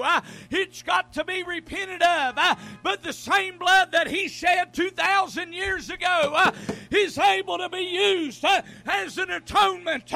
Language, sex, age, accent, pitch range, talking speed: English, male, 40-59, American, 325-375 Hz, 165 wpm